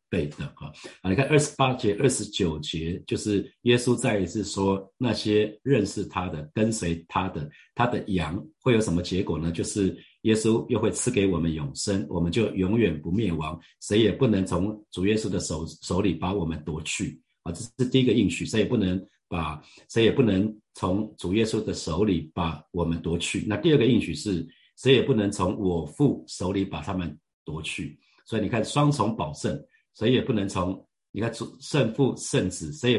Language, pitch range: Chinese, 85-110 Hz